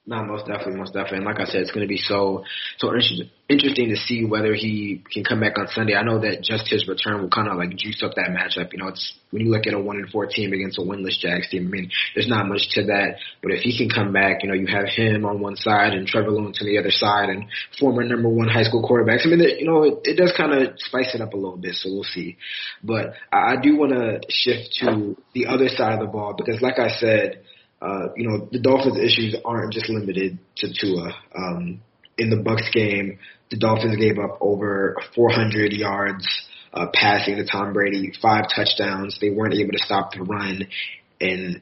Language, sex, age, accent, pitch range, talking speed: English, male, 20-39, American, 100-115 Hz, 235 wpm